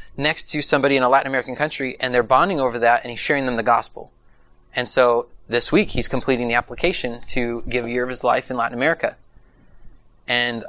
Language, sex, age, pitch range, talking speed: English, male, 20-39, 115-130 Hz, 215 wpm